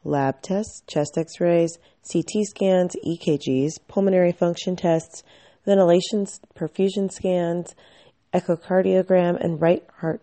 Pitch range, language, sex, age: 160-195 Hz, English, female, 30-49